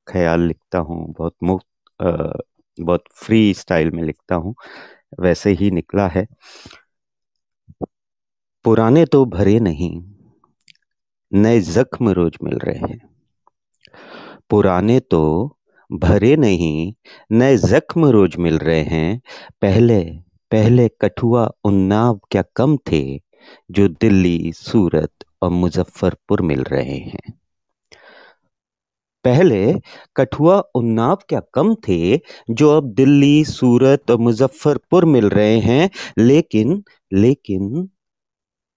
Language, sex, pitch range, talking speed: Hindi, male, 95-135 Hz, 105 wpm